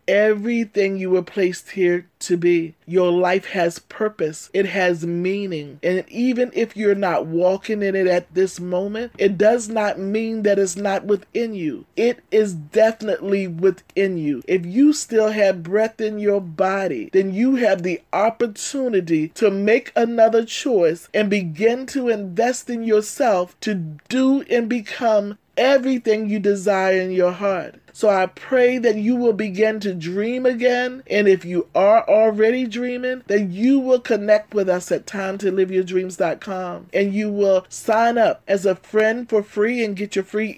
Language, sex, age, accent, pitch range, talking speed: English, male, 40-59, American, 185-230 Hz, 170 wpm